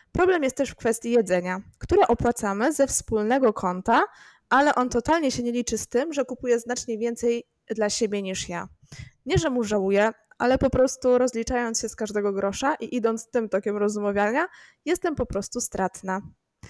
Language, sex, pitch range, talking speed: Polish, female, 215-260 Hz, 175 wpm